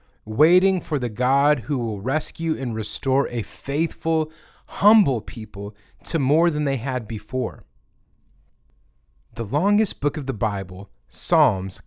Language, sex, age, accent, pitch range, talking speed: English, male, 30-49, American, 105-145 Hz, 130 wpm